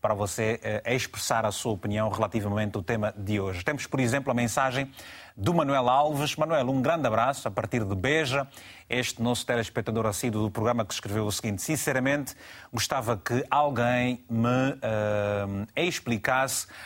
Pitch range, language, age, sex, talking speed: 110-135 Hz, Portuguese, 30-49, male, 160 wpm